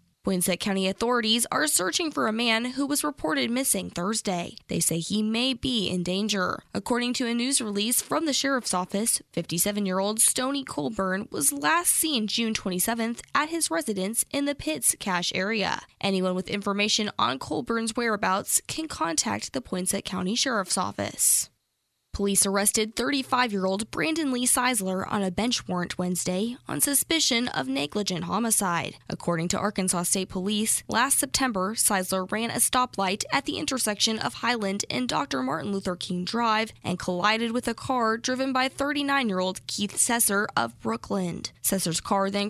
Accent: American